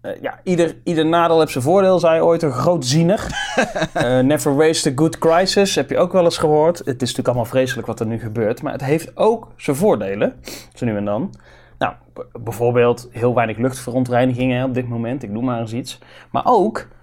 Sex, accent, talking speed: male, Dutch, 210 wpm